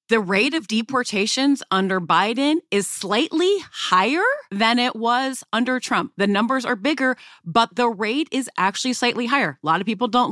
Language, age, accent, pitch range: English, 30-49, American, 190-260 Hz